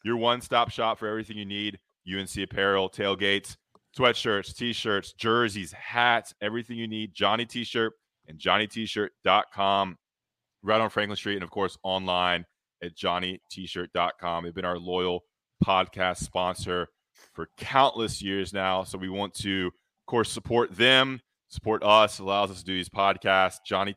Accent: American